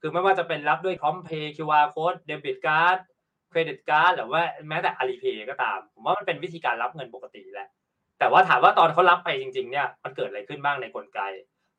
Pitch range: 135-180 Hz